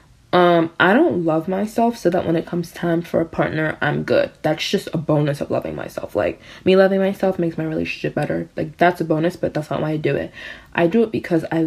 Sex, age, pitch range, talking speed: female, 20-39, 155-180 Hz, 240 wpm